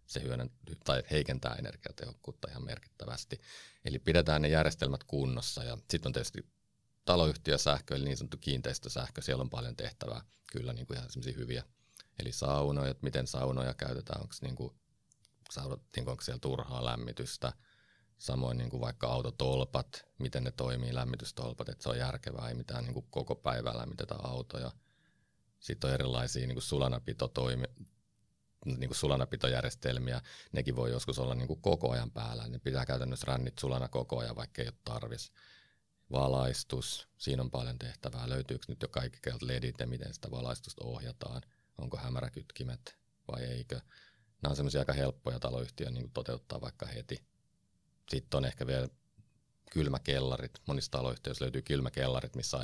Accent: native